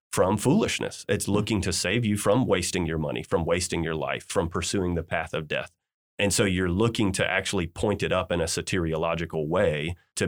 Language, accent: English, American